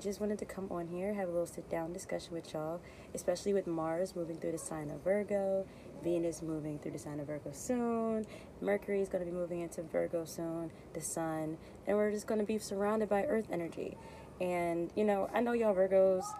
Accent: American